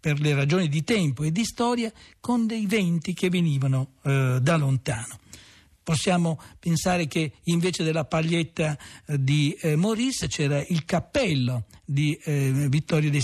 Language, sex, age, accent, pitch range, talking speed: Italian, male, 60-79, native, 150-215 Hz, 150 wpm